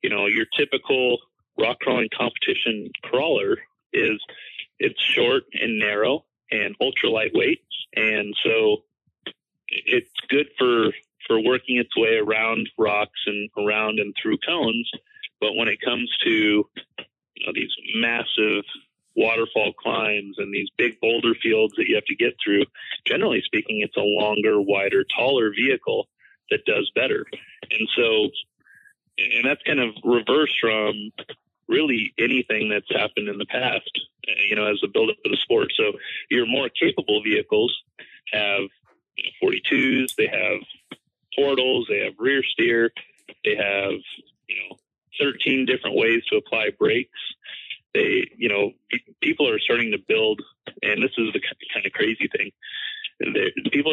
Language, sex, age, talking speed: English, male, 30-49, 145 wpm